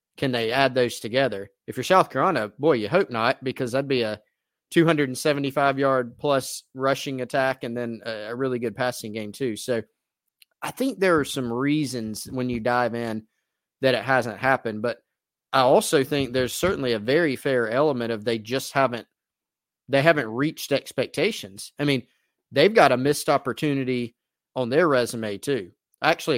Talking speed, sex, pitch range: 170 wpm, male, 115-140 Hz